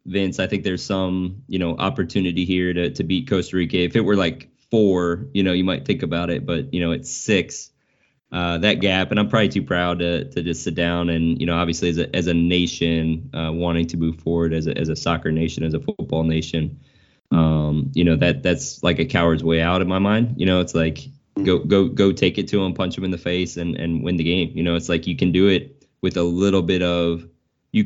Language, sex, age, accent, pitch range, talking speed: English, male, 20-39, American, 80-95 Hz, 250 wpm